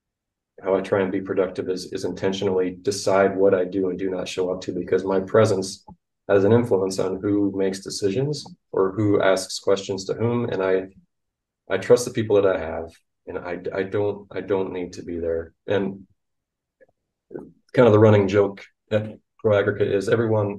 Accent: American